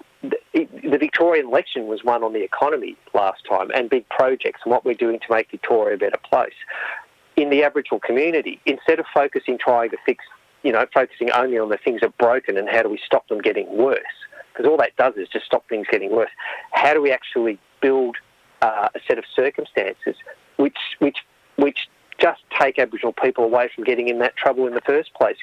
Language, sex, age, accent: English, male, 40-59, Australian